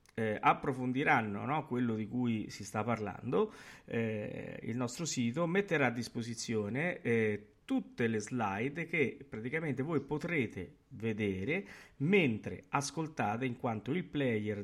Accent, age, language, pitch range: native, 50-69, Italian, 110-140 Hz